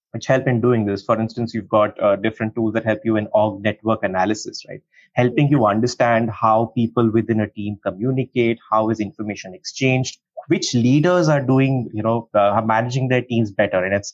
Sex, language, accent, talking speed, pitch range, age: male, English, Indian, 200 wpm, 105-130 Hz, 30-49